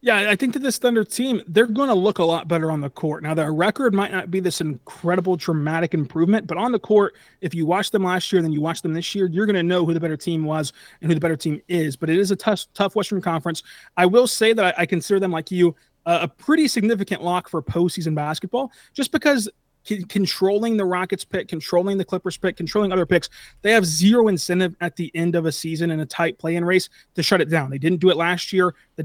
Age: 30-49